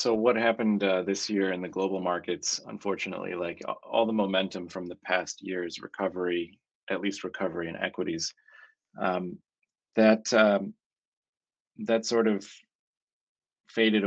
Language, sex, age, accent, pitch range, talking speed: English, male, 30-49, American, 90-100 Hz, 135 wpm